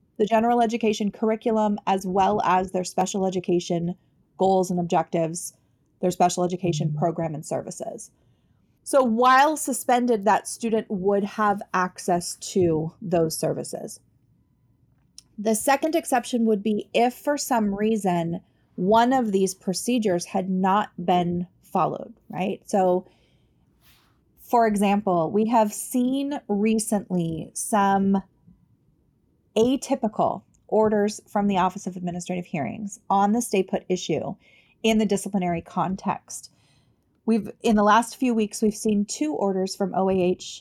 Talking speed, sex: 125 wpm, female